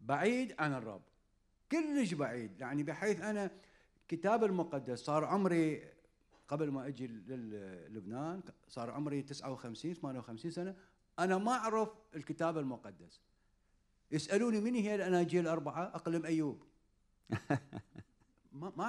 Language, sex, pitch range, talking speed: Arabic, male, 125-180 Hz, 110 wpm